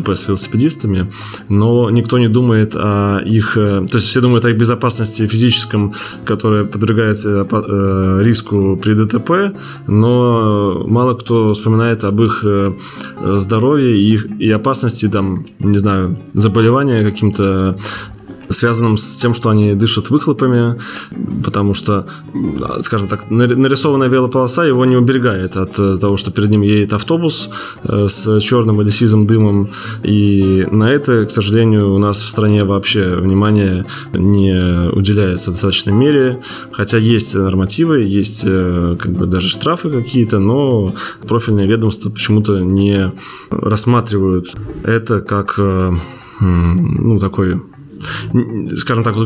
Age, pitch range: 20-39, 100-115 Hz